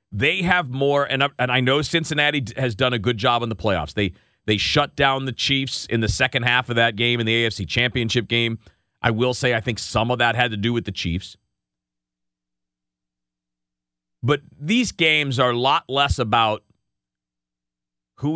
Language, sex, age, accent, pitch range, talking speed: English, male, 40-59, American, 95-130 Hz, 185 wpm